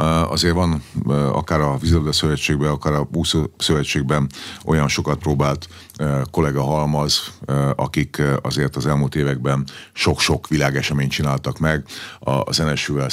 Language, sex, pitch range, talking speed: Hungarian, male, 70-80 Hz, 120 wpm